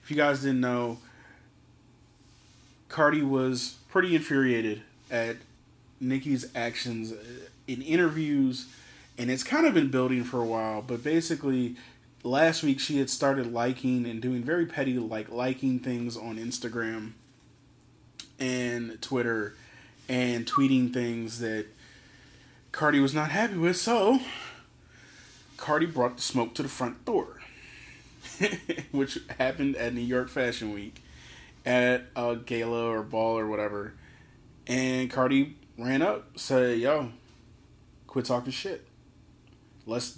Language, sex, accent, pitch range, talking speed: English, male, American, 115-135 Hz, 125 wpm